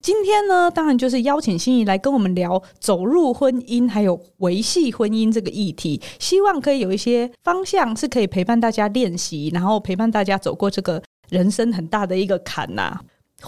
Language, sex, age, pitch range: Chinese, female, 20-39, 180-240 Hz